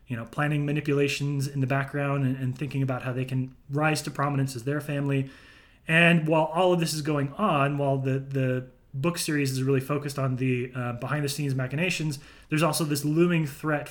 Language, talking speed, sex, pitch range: English, 200 wpm, male, 130-150 Hz